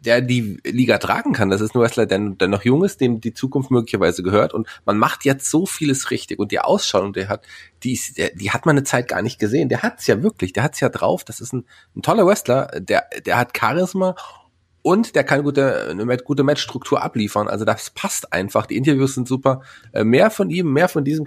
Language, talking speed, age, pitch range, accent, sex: German, 240 wpm, 30-49, 110-140 Hz, German, male